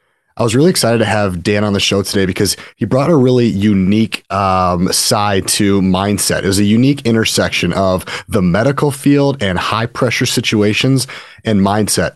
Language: English